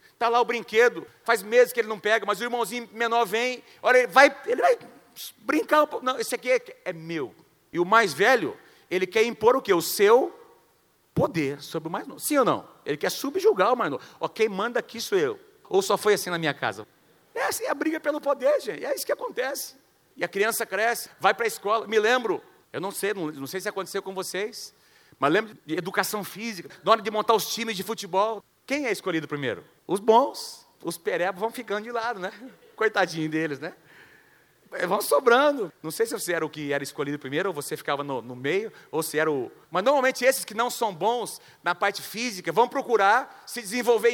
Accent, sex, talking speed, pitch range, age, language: Brazilian, male, 215 wpm, 195-265 Hz, 40-59, Portuguese